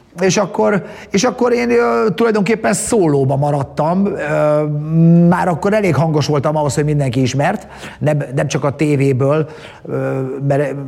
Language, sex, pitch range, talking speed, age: Hungarian, male, 135-160 Hz, 125 wpm, 30-49